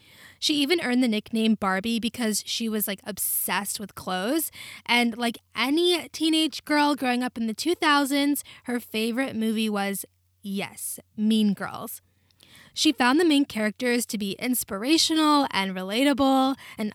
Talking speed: 145 wpm